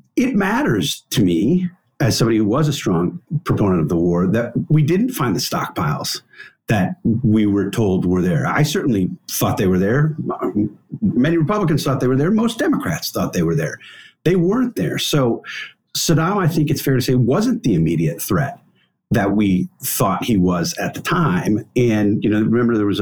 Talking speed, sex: 190 wpm, male